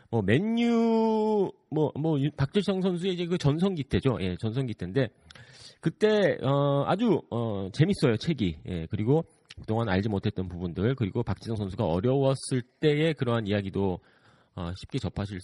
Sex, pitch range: male, 95-155 Hz